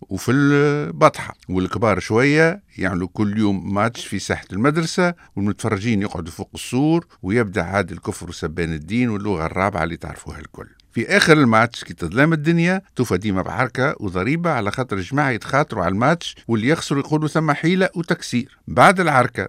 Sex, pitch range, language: male, 100-145 Hz, Arabic